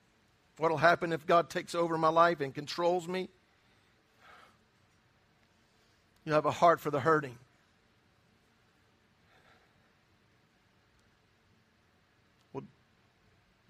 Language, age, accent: English, 50-69, American